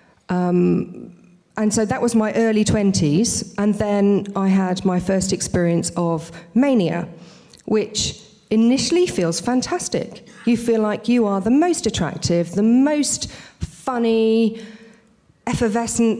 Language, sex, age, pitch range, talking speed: English, female, 40-59, 170-225 Hz, 120 wpm